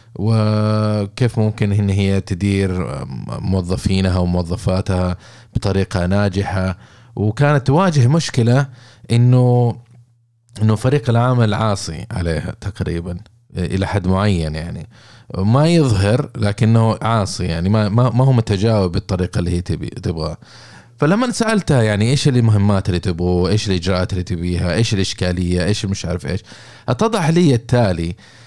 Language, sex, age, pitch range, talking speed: Arabic, male, 20-39, 100-125 Hz, 120 wpm